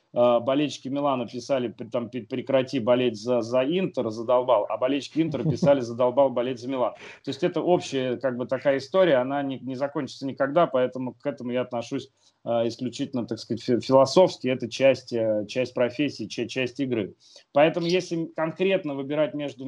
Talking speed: 155 wpm